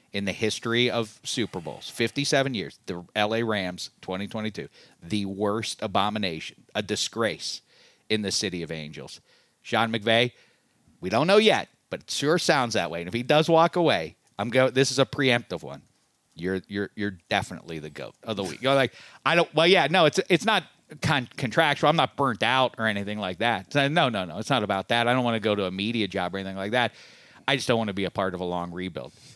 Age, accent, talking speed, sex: 40-59, American, 220 wpm, male